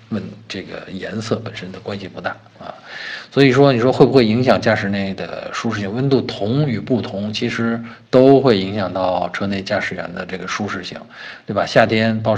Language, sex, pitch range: Chinese, male, 100-120 Hz